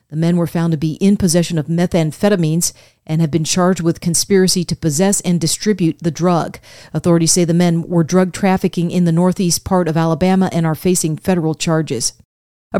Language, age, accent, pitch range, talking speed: English, 40-59, American, 165-205 Hz, 190 wpm